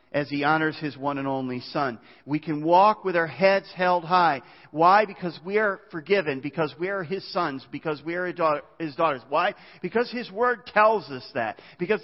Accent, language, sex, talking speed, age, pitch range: American, English, male, 195 wpm, 50-69, 125-175 Hz